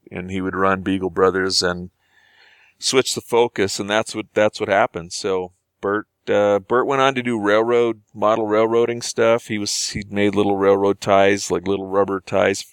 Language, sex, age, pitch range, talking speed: English, male, 40-59, 95-105 Hz, 185 wpm